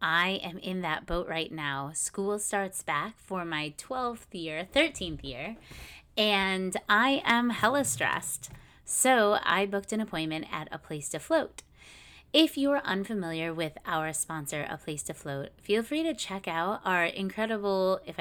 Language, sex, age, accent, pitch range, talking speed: English, female, 20-39, American, 160-200 Hz, 165 wpm